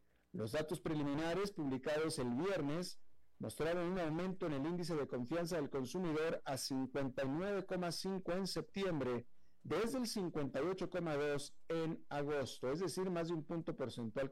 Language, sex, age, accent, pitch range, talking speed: Spanish, male, 50-69, Mexican, 125-170 Hz, 135 wpm